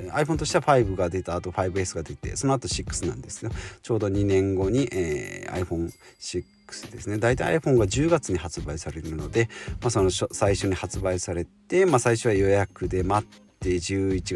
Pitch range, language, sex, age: 90-125 Hz, Japanese, male, 40-59